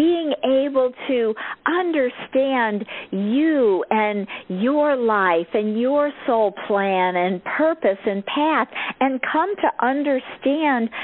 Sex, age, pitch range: female, 50-69, 215-275 Hz